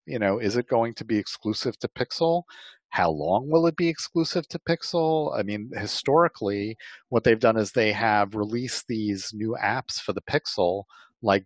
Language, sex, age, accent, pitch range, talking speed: English, male, 50-69, American, 95-125 Hz, 185 wpm